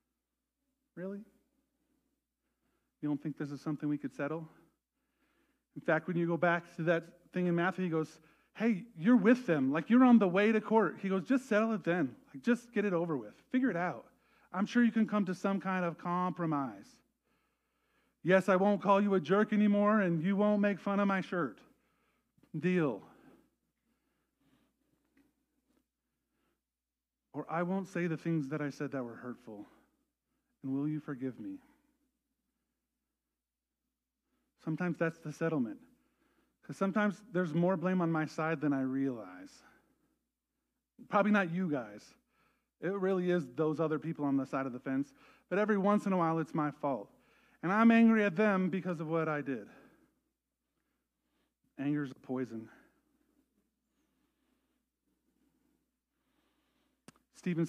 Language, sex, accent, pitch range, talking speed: English, male, American, 160-260 Hz, 155 wpm